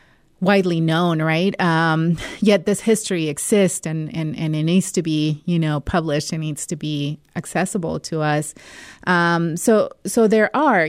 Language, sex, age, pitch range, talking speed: English, female, 30-49, 160-195 Hz, 165 wpm